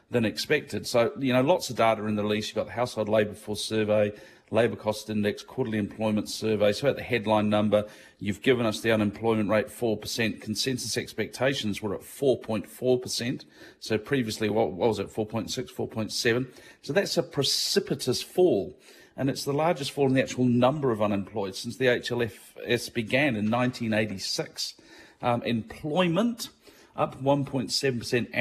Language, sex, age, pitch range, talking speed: English, male, 40-59, 105-130 Hz, 155 wpm